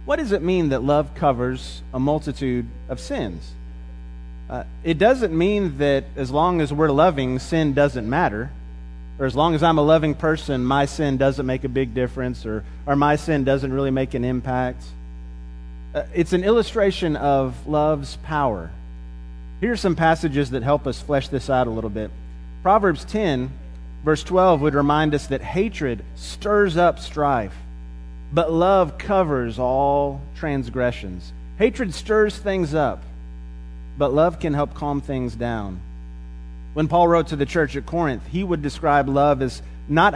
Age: 30-49